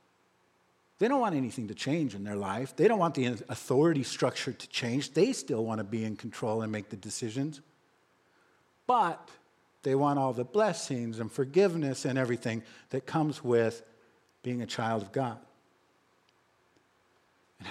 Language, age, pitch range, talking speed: English, 50-69, 115-160 Hz, 160 wpm